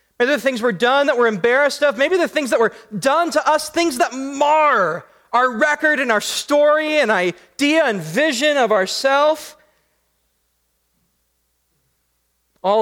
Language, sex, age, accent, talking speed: English, male, 30-49, American, 150 wpm